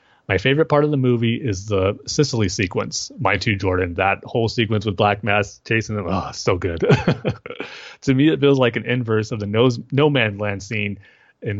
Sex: male